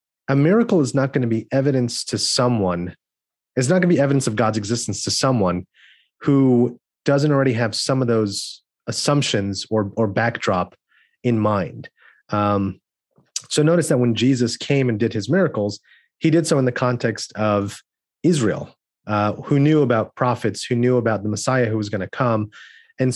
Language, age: English, 30-49